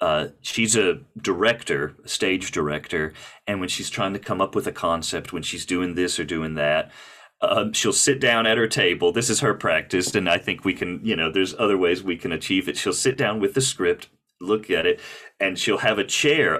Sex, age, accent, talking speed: male, 40-59, American, 220 wpm